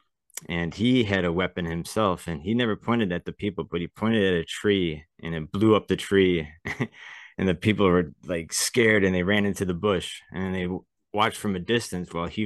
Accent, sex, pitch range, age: American, male, 85-95 Hz, 20-39